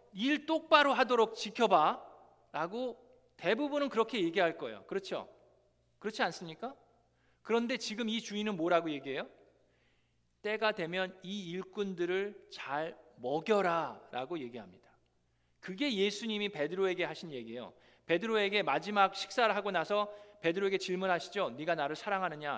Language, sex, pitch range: Korean, male, 165-225 Hz